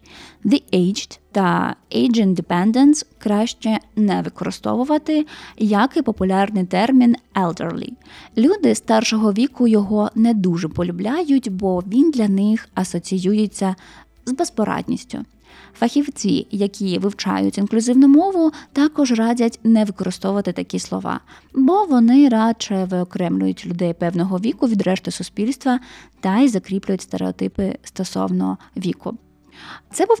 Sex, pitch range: female, 185-240 Hz